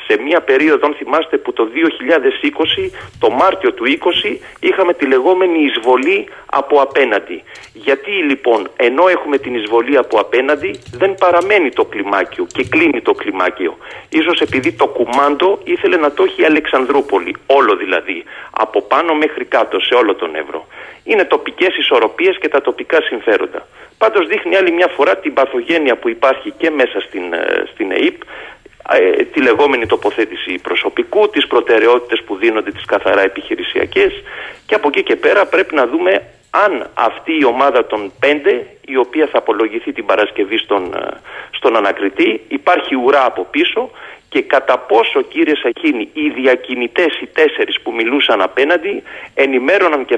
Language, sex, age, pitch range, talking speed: Greek, male, 40-59, 315-420 Hz, 150 wpm